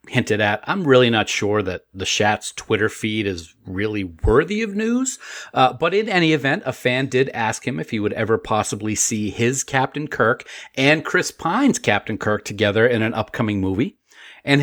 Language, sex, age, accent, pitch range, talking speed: English, male, 40-59, American, 110-145 Hz, 190 wpm